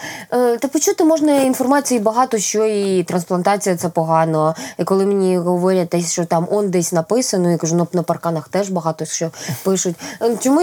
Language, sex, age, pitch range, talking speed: Ukrainian, female, 20-39, 180-230 Hz, 150 wpm